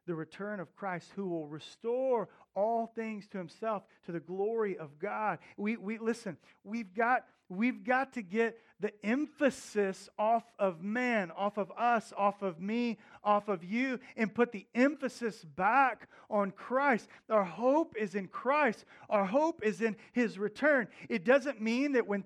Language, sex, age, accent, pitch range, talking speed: English, male, 40-59, American, 200-250 Hz, 165 wpm